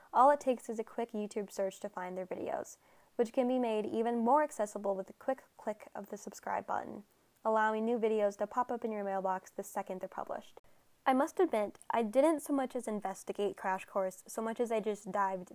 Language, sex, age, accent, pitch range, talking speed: English, female, 10-29, American, 200-245 Hz, 220 wpm